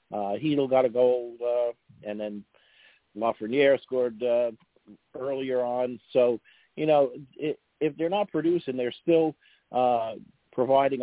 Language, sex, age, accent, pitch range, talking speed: English, male, 50-69, American, 115-145 Hz, 135 wpm